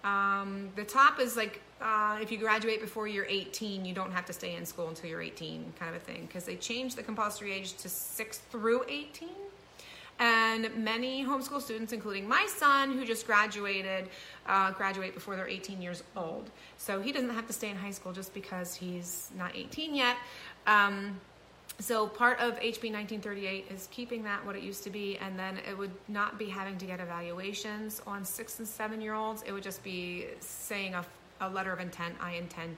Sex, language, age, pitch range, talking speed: female, English, 30-49, 190-230 Hz, 200 wpm